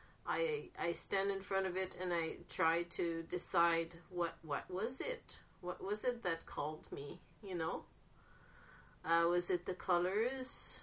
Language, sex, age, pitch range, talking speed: English, female, 30-49, 180-270 Hz, 160 wpm